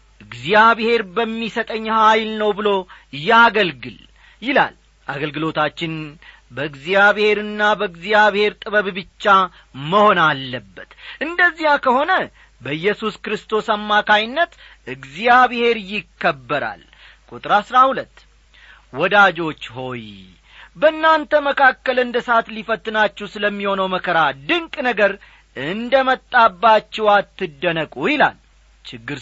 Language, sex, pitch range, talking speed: English, male, 155-235 Hz, 70 wpm